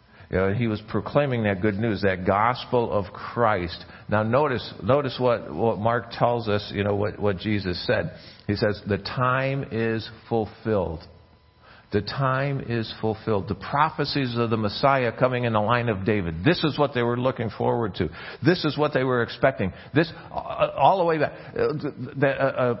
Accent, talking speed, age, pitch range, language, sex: American, 170 wpm, 50-69, 110-140 Hz, English, male